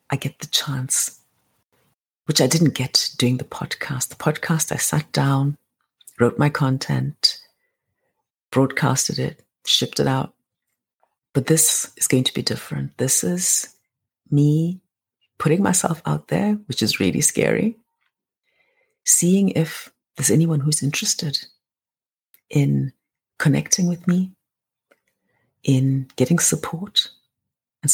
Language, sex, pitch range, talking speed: English, female, 135-165 Hz, 120 wpm